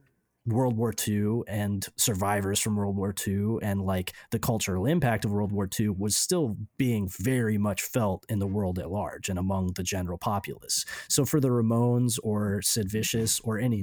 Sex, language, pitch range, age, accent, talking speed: male, English, 100-125 Hz, 30-49, American, 185 wpm